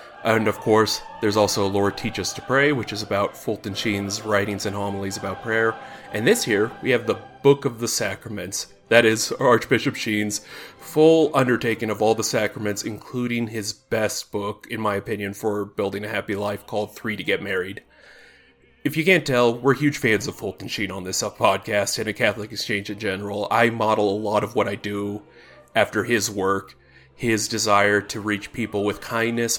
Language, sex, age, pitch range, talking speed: English, male, 30-49, 100-120 Hz, 190 wpm